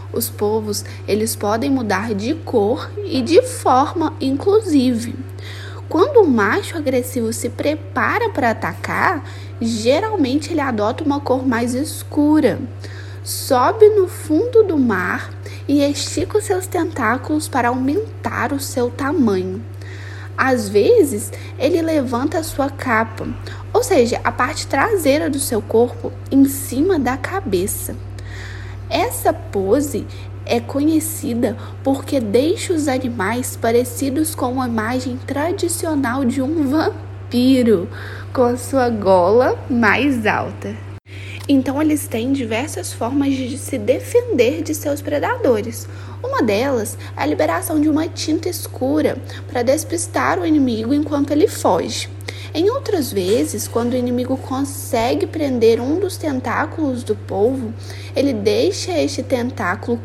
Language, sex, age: Portuguese, female, 10-29